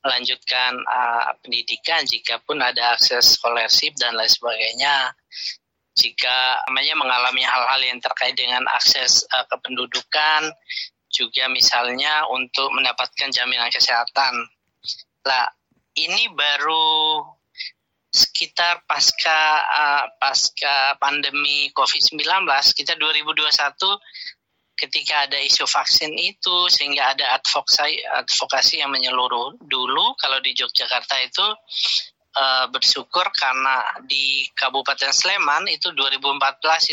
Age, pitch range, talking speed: 20-39, 125-155 Hz, 100 wpm